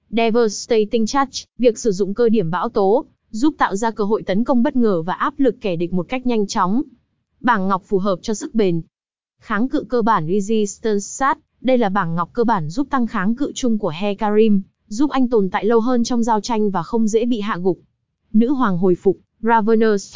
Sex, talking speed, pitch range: female, 220 wpm, 200-245 Hz